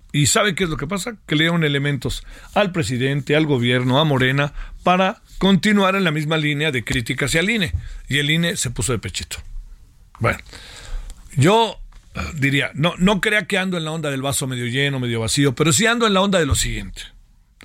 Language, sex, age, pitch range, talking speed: Spanish, male, 50-69, 130-180 Hz, 205 wpm